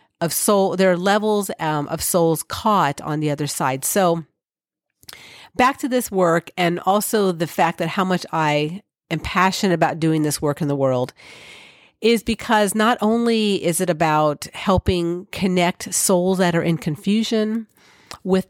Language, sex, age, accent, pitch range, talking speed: English, female, 40-59, American, 160-200 Hz, 160 wpm